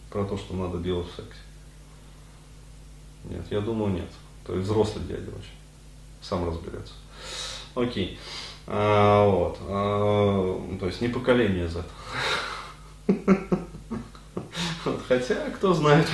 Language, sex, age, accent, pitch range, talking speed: Russian, male, 20-39, native, 95-125 Hz, 110 wpm